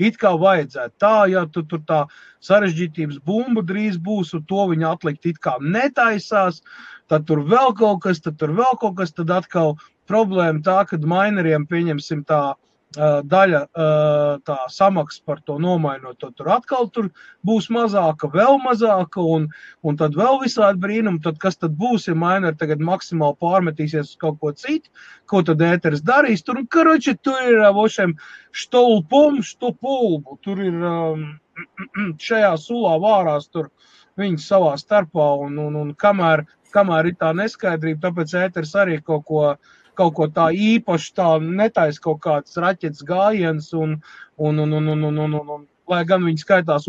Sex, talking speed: male, 160 wpm